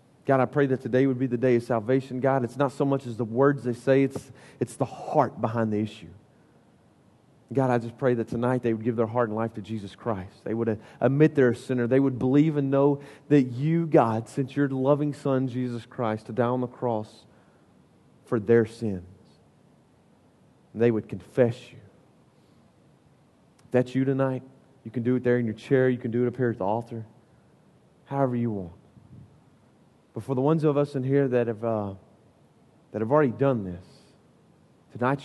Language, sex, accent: English, male, American